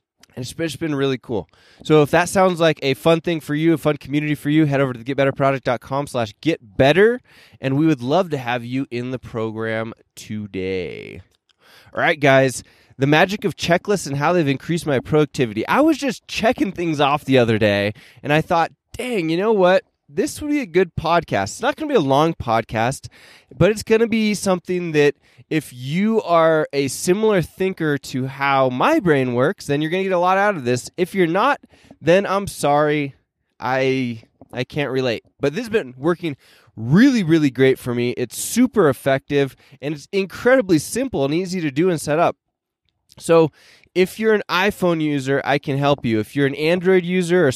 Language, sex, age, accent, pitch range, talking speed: English, male, 20-39, American, 135-180 Hz, 205 wpm